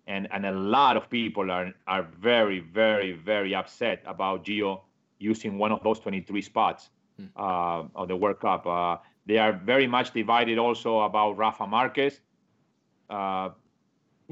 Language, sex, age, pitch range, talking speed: English, male, 40-59, 110-145 Hz, 150 wpm